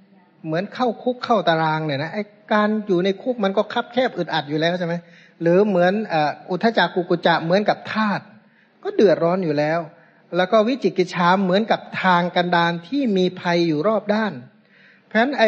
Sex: male